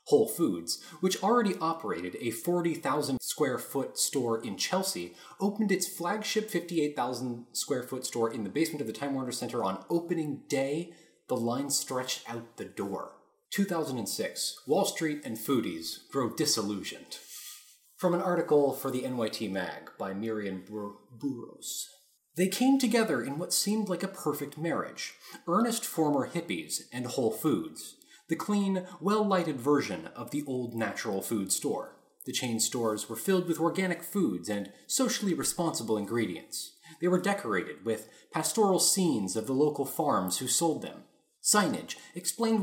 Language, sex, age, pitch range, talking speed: English, male, 30-49, 125-185 Hz, 145 wpm